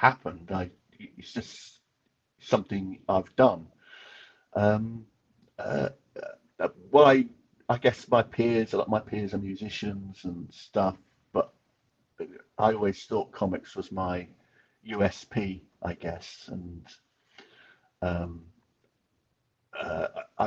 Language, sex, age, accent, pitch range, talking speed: English, male, 50-69, British, 90-110 Hz, 115 wpm